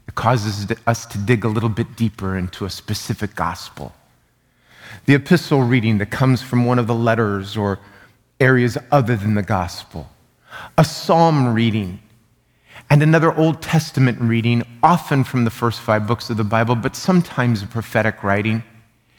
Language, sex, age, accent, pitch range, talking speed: English, male, 30-49, American, 110-150 Hz, 155 wpm